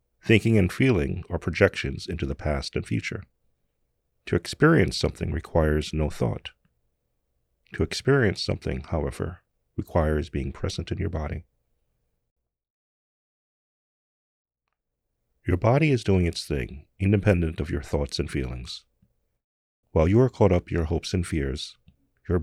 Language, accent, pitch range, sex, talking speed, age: English, American, 65-100 Hz, male, 130 wpm, 40-59